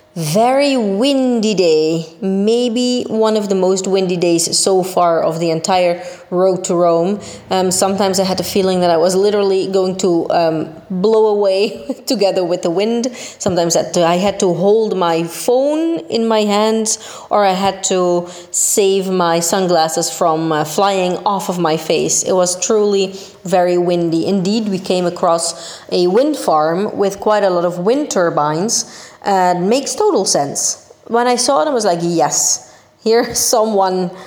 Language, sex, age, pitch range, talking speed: Italian, female, 30-49, 175-220 Hz, 165 wpm